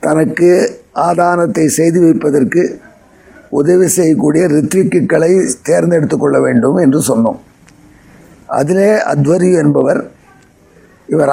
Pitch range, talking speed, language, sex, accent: 165-195 Hz, 85 wpm, Tamil, male, native